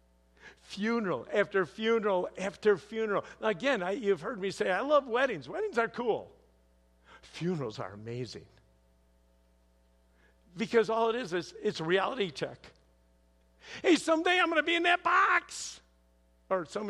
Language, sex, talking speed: English, male, 140 wpm